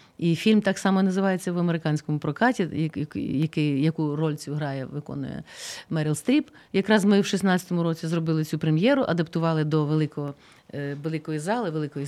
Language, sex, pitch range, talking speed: Ukrainian, female, 155-180 Hz, 140 wpm